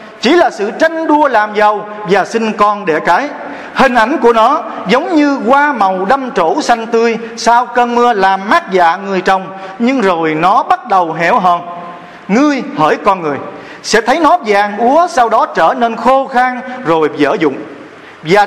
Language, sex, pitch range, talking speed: Vietnamese, male, 175-250 Hz, 190 wpm